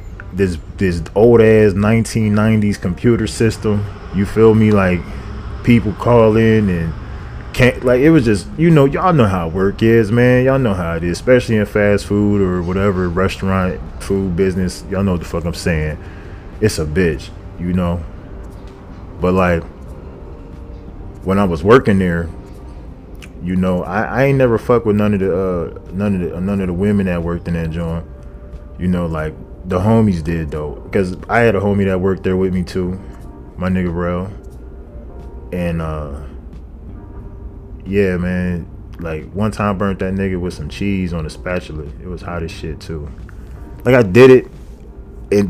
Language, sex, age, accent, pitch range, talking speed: English, male, 20-39, American, 80-100 Hz, 180 wpm